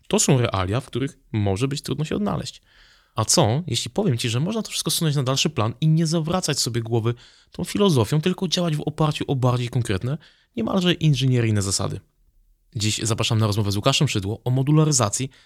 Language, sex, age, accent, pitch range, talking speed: Polish, male, 20-39, native, 105-140 Hz, 190 wpm